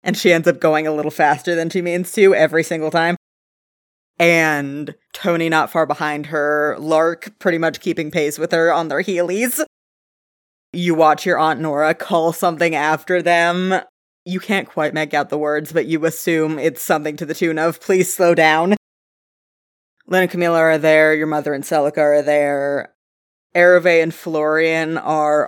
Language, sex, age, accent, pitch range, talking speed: English, female, 20-39, American, 155-170 Hz, 175 wpm